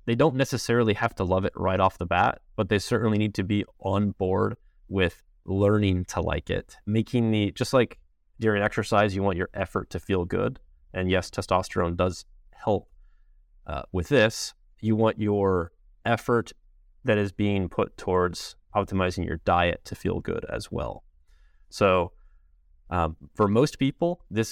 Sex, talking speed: male, 165 wpm